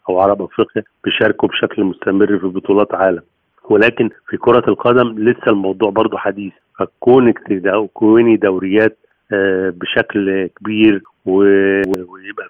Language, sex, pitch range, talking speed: Arabic, male, 95-110 Hz, 105 wpm